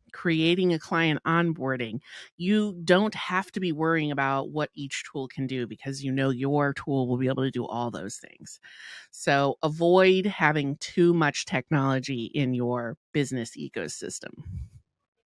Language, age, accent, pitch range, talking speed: English, 30-49, American, 145-185 Hz, 155 wpm